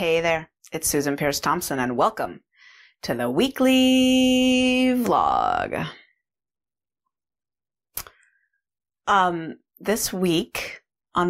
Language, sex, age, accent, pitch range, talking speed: English, female, 30-49, American, 150-175 Hz, 85 wpm